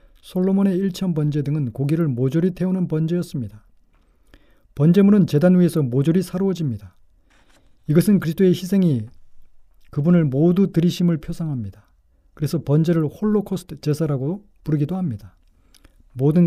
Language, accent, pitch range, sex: Korean, native, 130-175 Hz, male